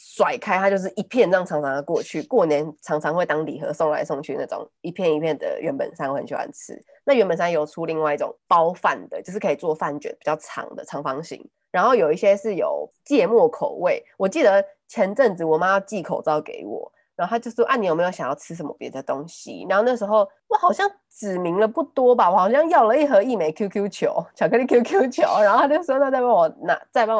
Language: Chinese